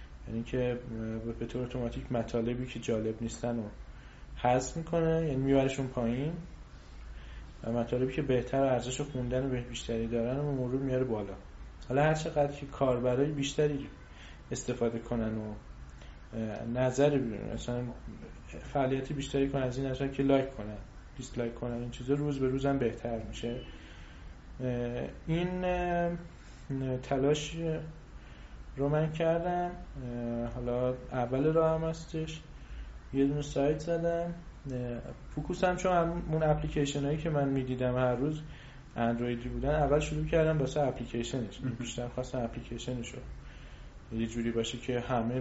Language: Persian